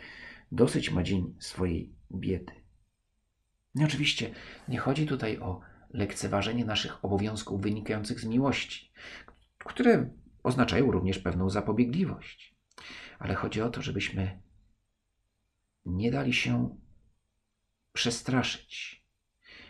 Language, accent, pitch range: Polish, native, 100-145 Hz